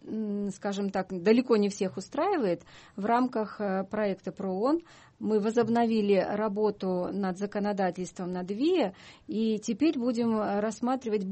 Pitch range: 190-235 Hz